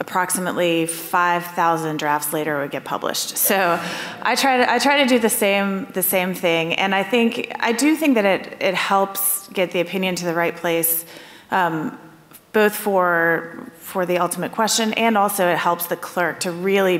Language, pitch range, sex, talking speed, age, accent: English, 165-190 Hz, female, 185 wpm, 30-49, American